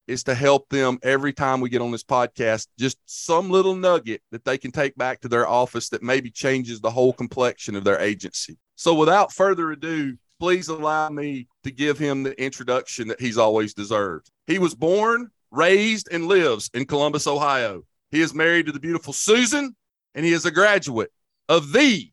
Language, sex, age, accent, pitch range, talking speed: English, male, 30-49, American, 140-190 Hz, 195 wpm